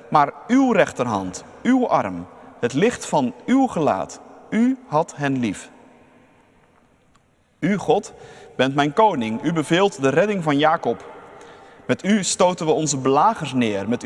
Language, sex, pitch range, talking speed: Dutch, male, 125-205 Hz, 140 wpm